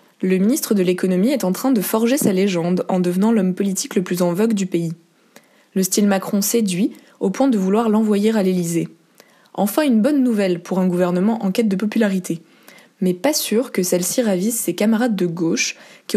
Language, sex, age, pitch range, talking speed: French, female, 20-39, 185-230 Hz, 200 wpm